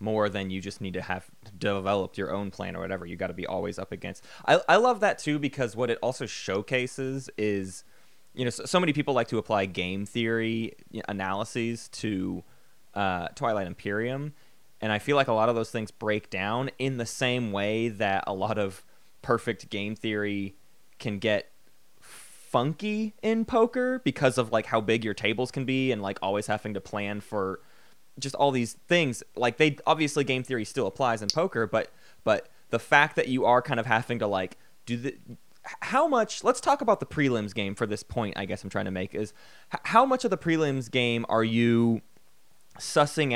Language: English